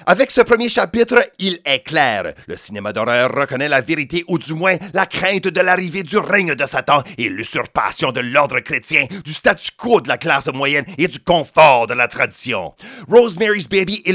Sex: male